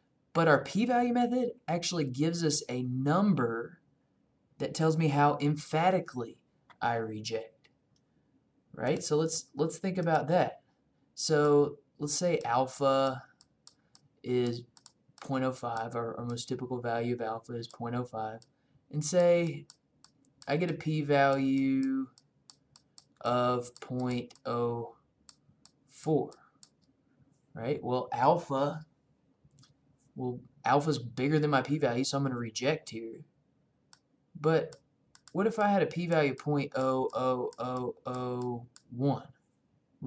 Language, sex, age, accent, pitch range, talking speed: English, male, 20-39, American, 125-155 Hz, 105 wpm